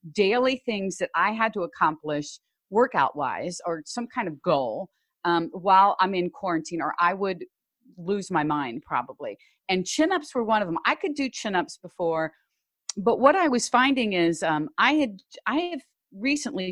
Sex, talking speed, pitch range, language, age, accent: female, 175 wpm, 180-275 Hz, English, 40-59, American